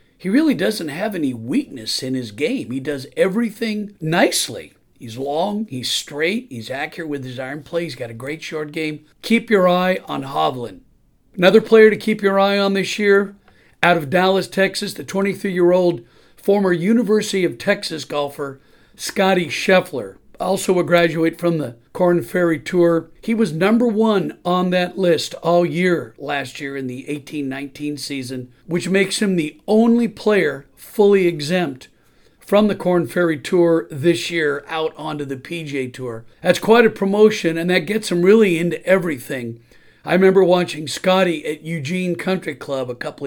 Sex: male